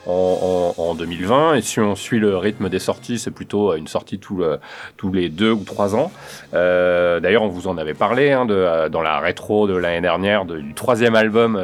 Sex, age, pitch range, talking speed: male, 30-49, 95-115 Hz, 220 wpm